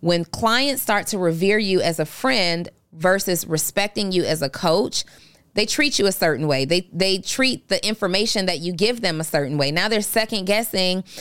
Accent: American